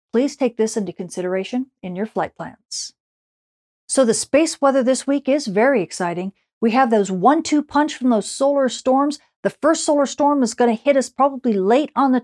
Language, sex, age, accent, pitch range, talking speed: English, female, 40-59, American, 215-270 Hz, 190 wpm